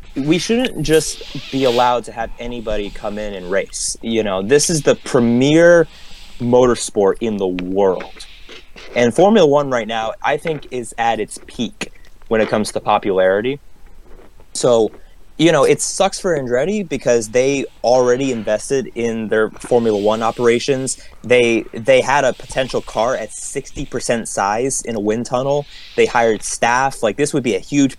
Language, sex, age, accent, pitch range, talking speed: English, male, 20-39, American, 110-145 Hz, 165 wpm